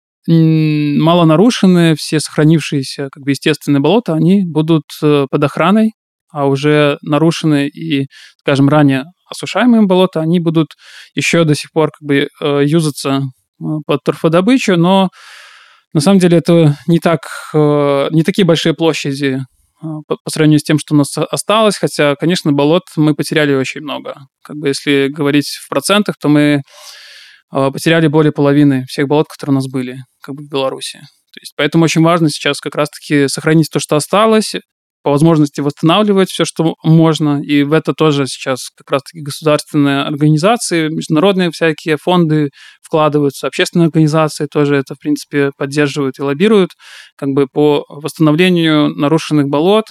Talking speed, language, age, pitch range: 150 wpm, Russian, 20-39, 145-165 Hz